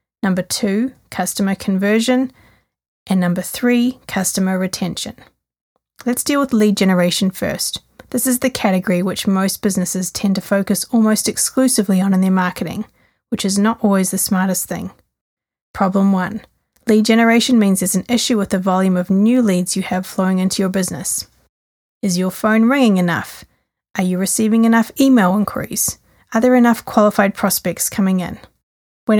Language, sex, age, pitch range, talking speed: English, female, 30-49, 190-225 Hz, 160 wpm